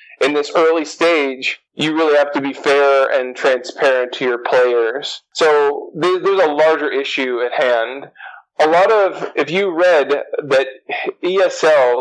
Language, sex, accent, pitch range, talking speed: English, male, American, 130-215 Hz, 150 wpm